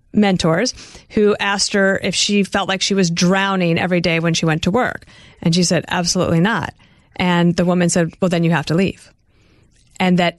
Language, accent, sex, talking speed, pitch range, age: English, American, female, 200 wpm, 170-205 Hz, 40-59